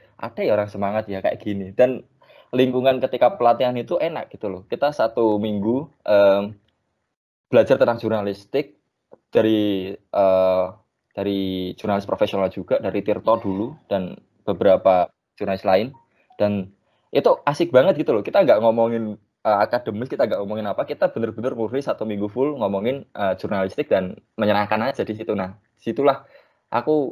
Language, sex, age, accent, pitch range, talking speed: English, male, 20-39, Indonesian, 100-120 Hz, 145 wpm